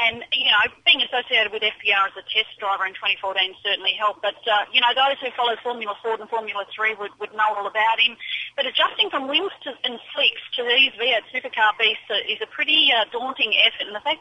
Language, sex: English, female